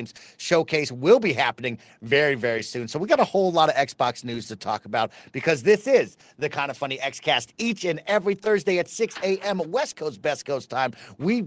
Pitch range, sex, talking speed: 130-175 Hz, male, 215 wpm